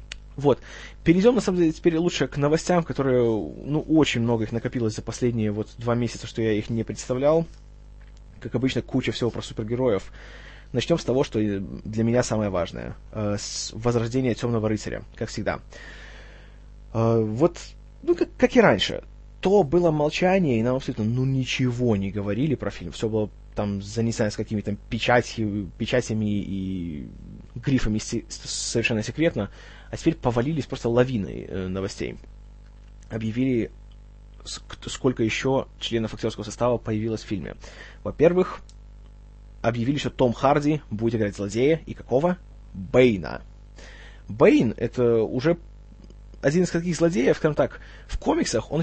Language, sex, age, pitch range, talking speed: Russian, male, 20-39, 110-135 Hz, 140 wpm